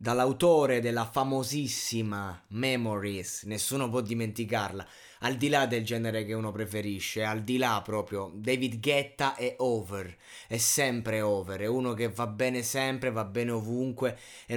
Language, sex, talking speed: Italian, male, 150 wpm